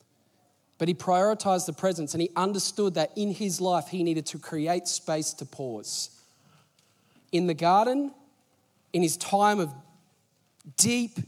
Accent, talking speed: Australian, 145 wpm